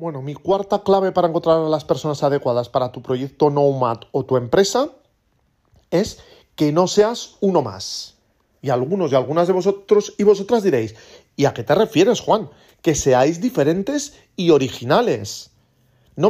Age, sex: 40-59, male